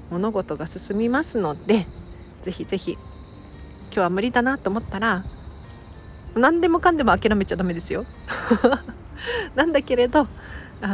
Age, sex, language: 40-59, female, Japanese